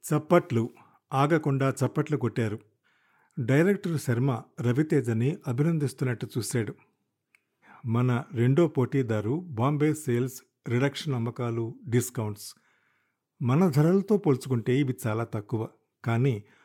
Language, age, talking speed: Telugu, 50-69, 85 wpm